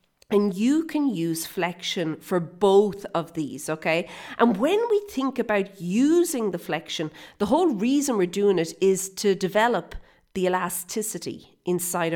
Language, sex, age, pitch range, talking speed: English, female, 40-59, 165-215 Hz, 150 wpm